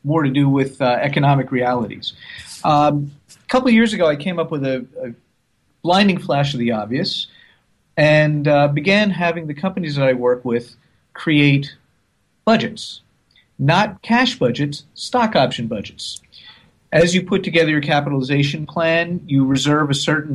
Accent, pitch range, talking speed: American, 135-165 Hz, 155 wpm